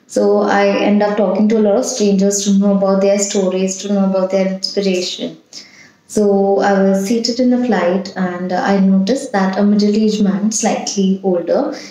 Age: 20-39